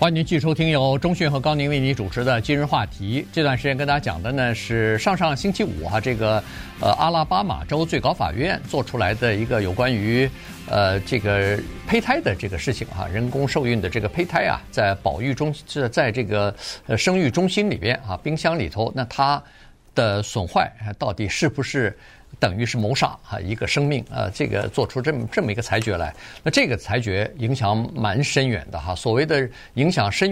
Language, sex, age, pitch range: Chinese, male, 50-69, 105-145 Hz